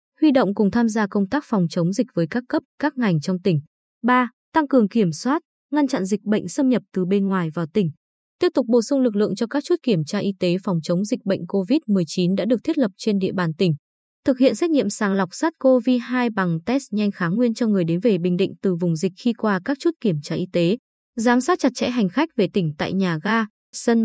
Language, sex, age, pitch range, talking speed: Vietnamese, female, 20-39, 190-255 Hz, 260 wpm